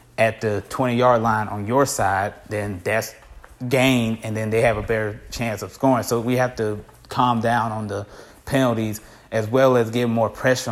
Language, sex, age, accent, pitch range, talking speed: English, male, 20-39, American, 105-120 Hz, 190 wpm